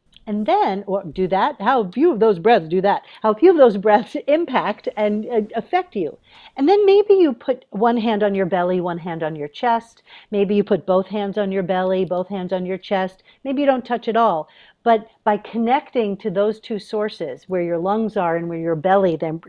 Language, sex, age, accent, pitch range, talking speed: English, female, 50-69, American, 190-240 Hz, 220 wpm